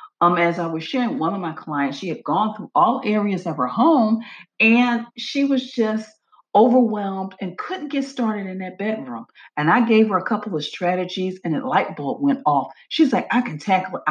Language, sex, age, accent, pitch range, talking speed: English, female, 40-59, American, 175-250 Hz, 215 wpm